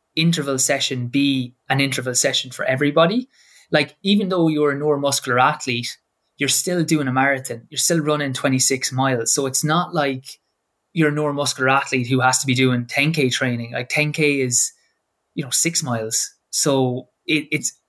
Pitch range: 130-150 Hz